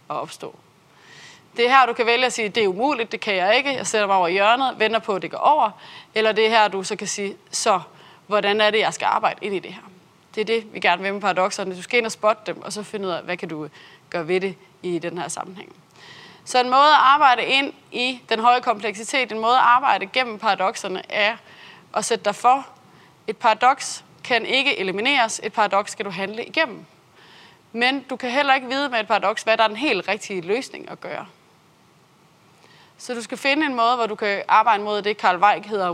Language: Danish